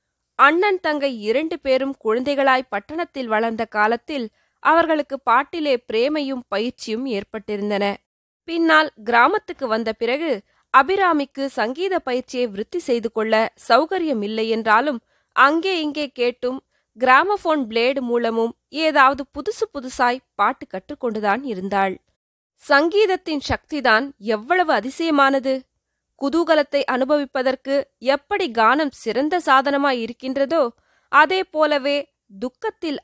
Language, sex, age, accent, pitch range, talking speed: Tamil, female, 20-39, native, 230-300 Hz, 90 wpm